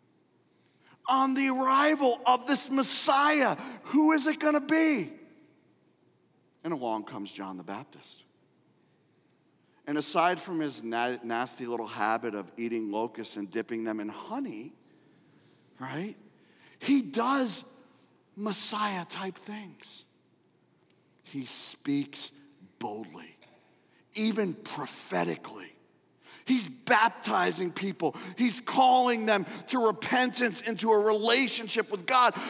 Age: 40-59